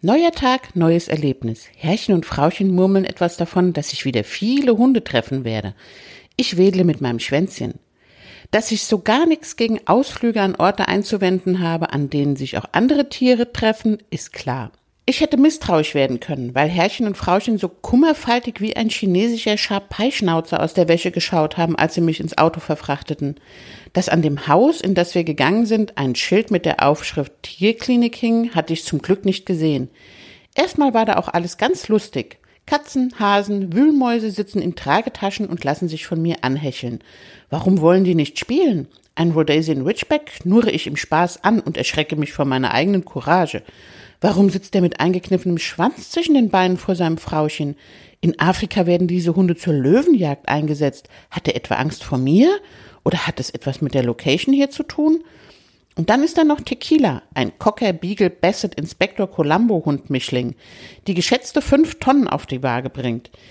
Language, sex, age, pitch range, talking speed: German, female, 50-69, 150-215 Hz, 175 wpm